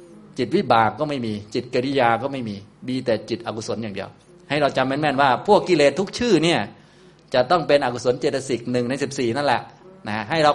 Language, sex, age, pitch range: Thai, male, 20-39, 115-155 Hz